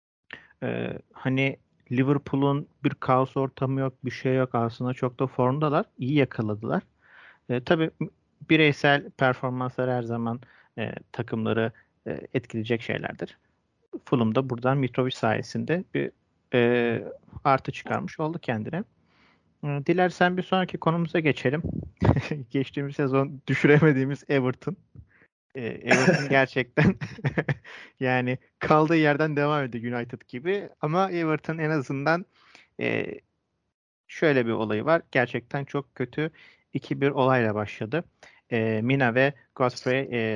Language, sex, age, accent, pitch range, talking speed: Turkish, male, 40-59, native, 120-150 Hz, 115 wpm